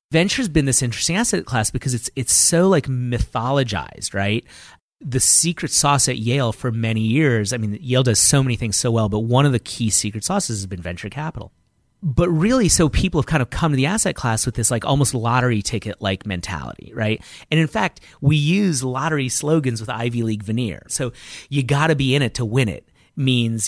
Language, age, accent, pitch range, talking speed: English, 30-49, American, 110-145 Hz, 215 wpm